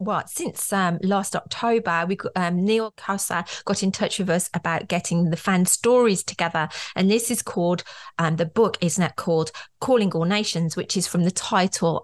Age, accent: 30-49, British